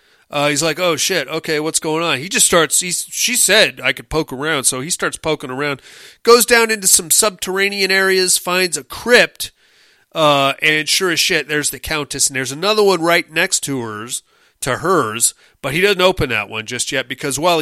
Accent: American